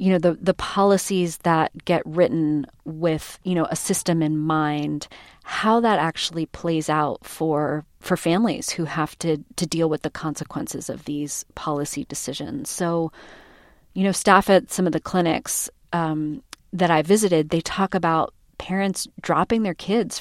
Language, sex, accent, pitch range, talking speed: English, female, American, 155-180 Hz, 165 wpm